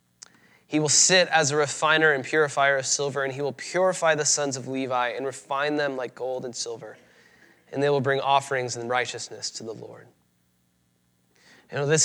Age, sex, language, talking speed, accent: 20-39, male, English, 190 wpm, American